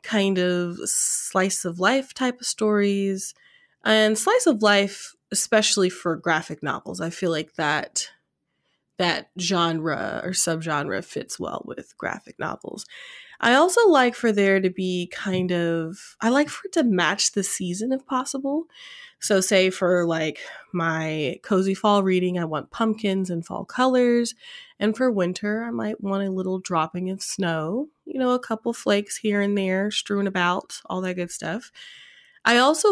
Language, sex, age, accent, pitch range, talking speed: English, female, 20-39, American, 175-235 Hz, 160 wpm